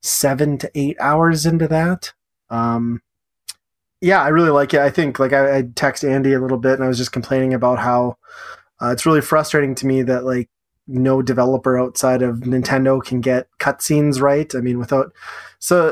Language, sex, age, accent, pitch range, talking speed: English, male, 20-39, American, 130-145 Hz, 190 wpm